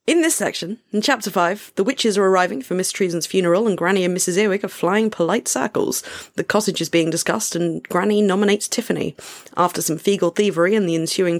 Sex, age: female, 30-49